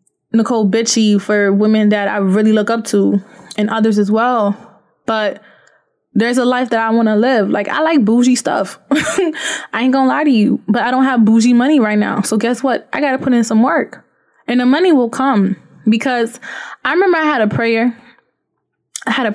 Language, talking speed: English, 210 wpm